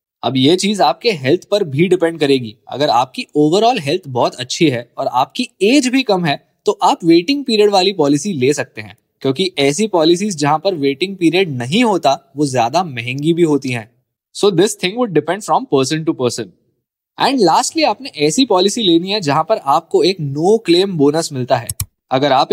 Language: Hindi